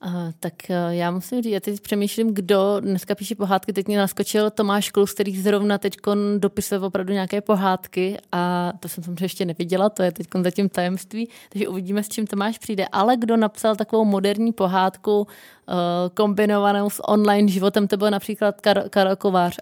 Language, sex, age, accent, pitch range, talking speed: Czech, female, 20-39, native, 190-210 Hz, 175 wpm